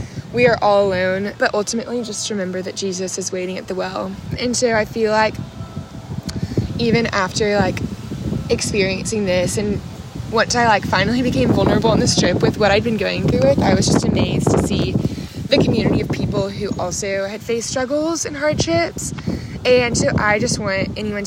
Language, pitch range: English, 190-230 Hz